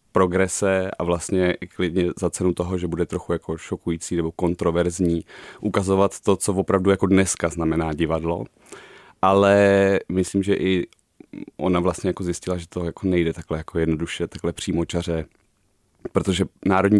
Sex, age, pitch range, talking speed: male, 30-49, 90-100 Hz, 150 wpm